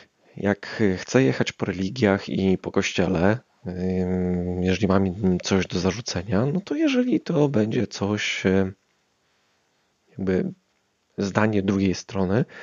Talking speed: 110 wpm